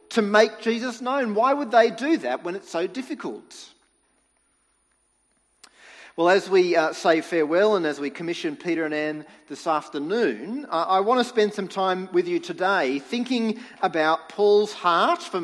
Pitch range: 160-235 Hz